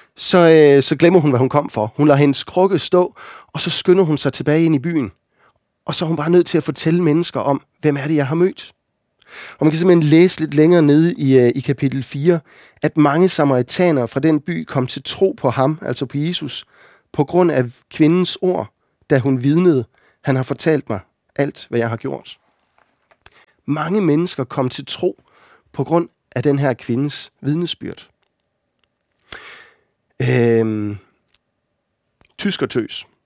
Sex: male